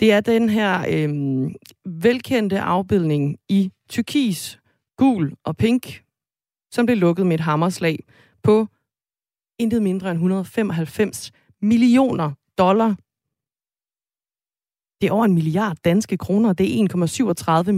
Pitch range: 155-205 Hz